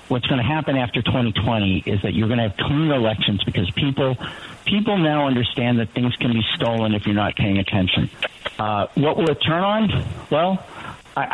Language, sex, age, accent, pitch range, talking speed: English, male, 60-79, American, 110-140 Hz, 195 wpm